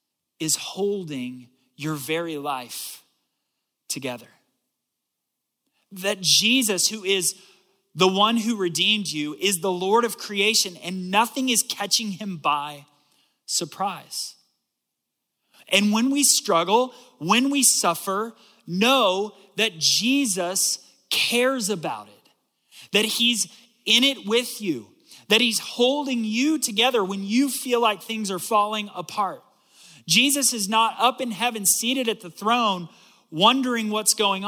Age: 30-49